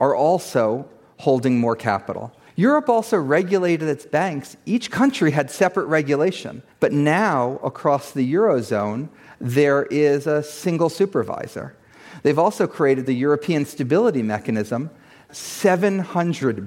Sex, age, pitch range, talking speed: male, 40-59, 110-160 Hz, 120 wpm